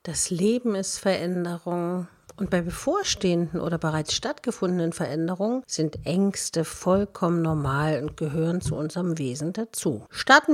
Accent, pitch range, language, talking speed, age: German, 150-220 Hz, German, 125 wpm, 50-69